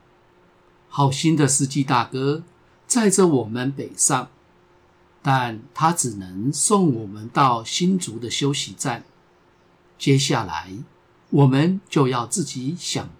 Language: Chinese